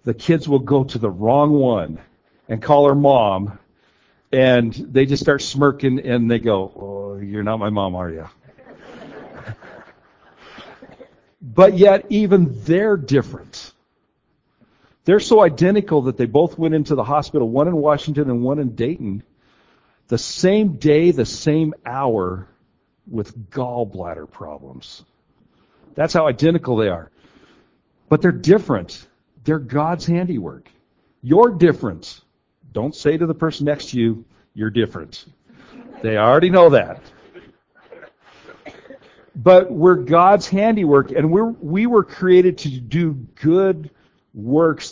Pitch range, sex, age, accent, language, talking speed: 115-160 Hz, male, 60-79, American, English, 130 wpm